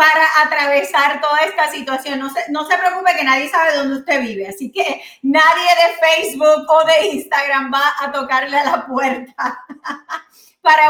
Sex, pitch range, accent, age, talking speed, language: female, 275-335 Hz, American, 30-49, 170 wpm, Spanish